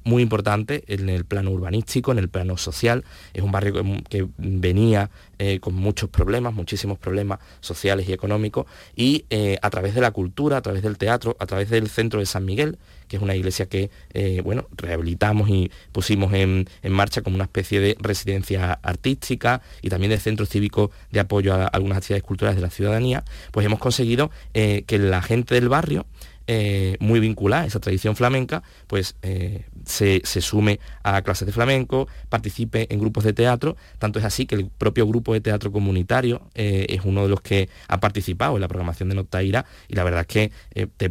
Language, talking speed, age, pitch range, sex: Spanish, 200 wpm, 20-39, 95-110 Hz, male